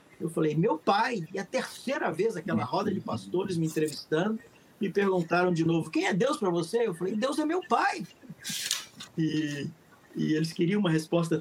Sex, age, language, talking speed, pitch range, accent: male, 50-69, Portuguese, 185 wpm, 155-185 Hz, Brazilian